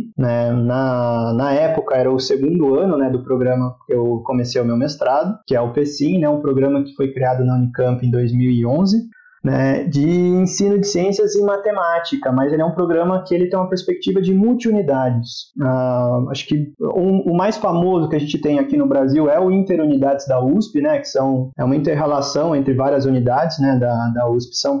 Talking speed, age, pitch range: 200 wpm, 20-39, 135-185 Hz